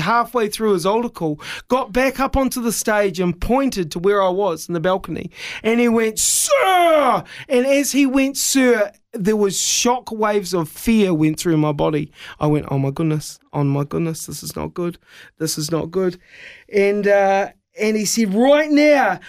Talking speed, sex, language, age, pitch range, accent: 190 wpm, male, English, 30-49, 220-300 Hz, Australian